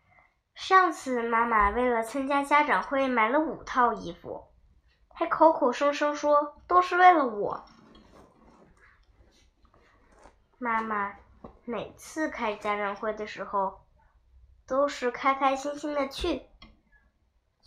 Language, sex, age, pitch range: Chinese, male, 10-29, 200-300 Hz